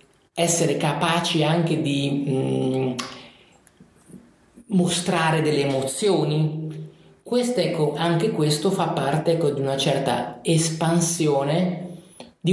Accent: native